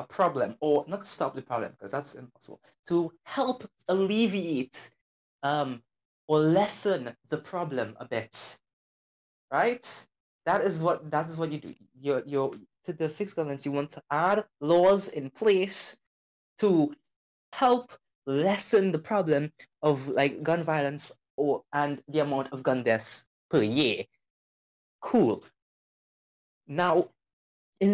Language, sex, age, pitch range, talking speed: English, male, 20-39, 140-205 Hz, 135 wpm